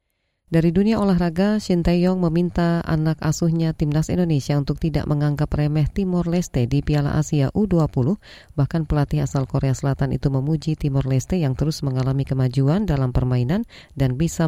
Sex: female